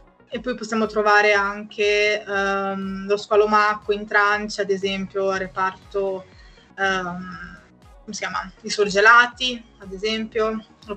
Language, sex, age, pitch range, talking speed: Italian, female, 20-39, 200-225 Hz, 110 wpm